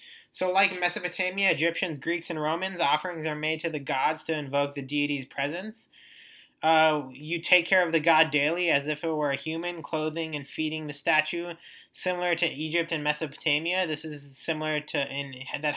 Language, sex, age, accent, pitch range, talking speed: English, male, 20-39, American, 150-175 Hz, 180 wpm